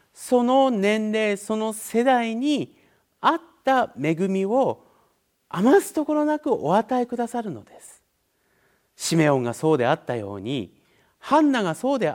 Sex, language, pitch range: male, Japanese, 155-250 Hz